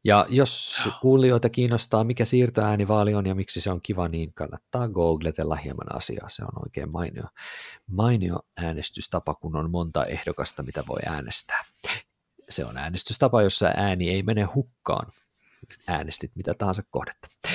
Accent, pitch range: native, 85-120 Hz